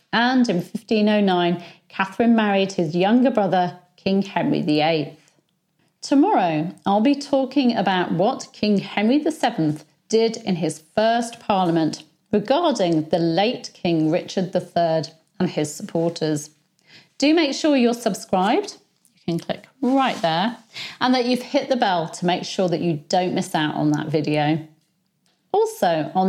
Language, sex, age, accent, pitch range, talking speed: English, female, 40-59, British, 170-220 Hz, 145 wpm